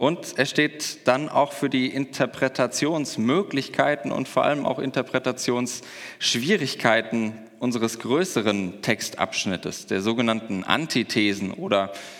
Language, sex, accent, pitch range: German, male, German, 105-130 Hz